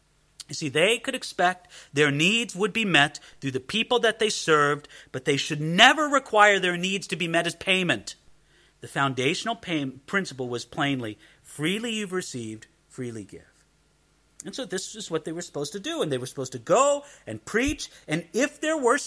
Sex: male